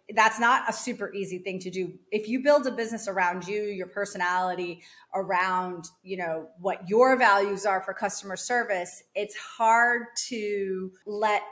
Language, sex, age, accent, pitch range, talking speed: English, female, 30-49, American, 185-230 Hz, 160 wpm